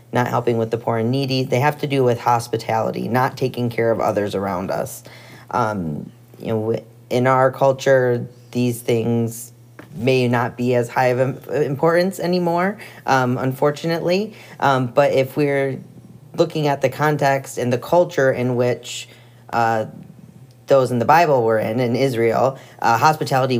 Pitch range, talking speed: 115-135 Hz, 160 wpm